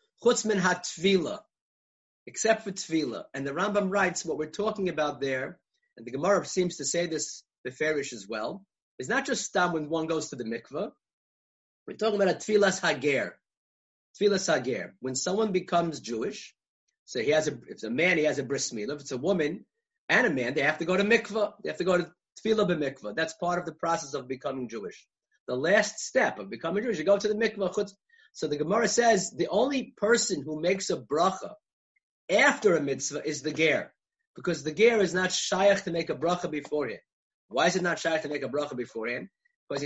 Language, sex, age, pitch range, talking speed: English, male, 30-49, 155-210 Hz, 205 wpm